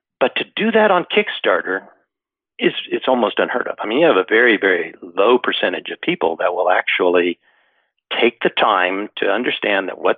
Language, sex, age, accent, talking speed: English, male, 50-69, American, 190 wpm